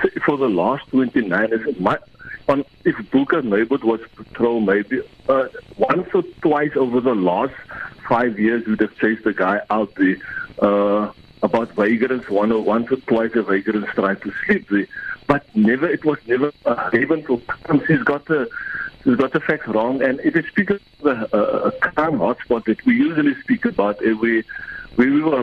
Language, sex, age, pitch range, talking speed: English, male, 60-79, 115-175 Hz, 185 wpm